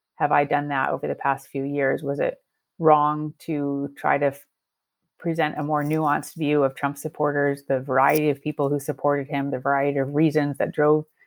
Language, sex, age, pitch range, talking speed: English, female, 30-49, 145-165 Hz, 190 wpm